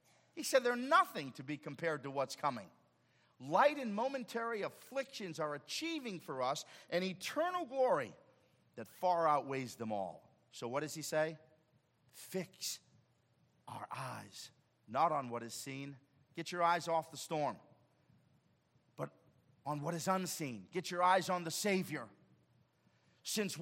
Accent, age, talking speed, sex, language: American, 40-59, 145 wpm, male, English